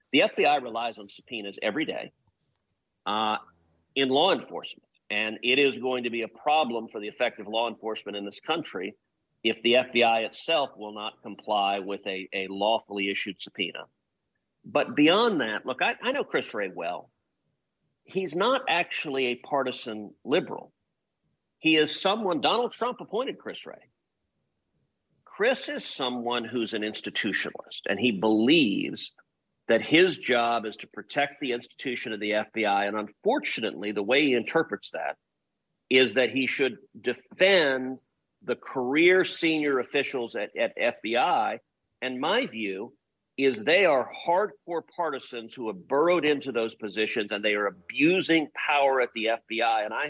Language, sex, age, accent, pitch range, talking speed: English, male, 50-69, American, 110-140 Hz, 150 wpm